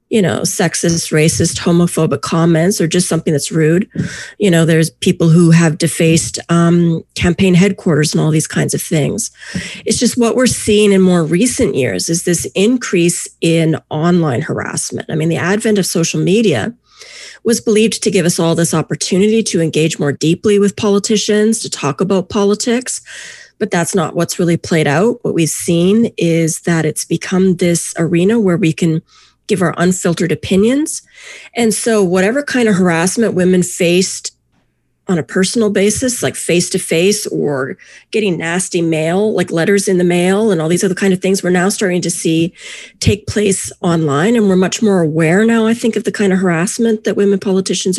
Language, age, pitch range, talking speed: English, 30-49, 165-210 Hz, 180 wpm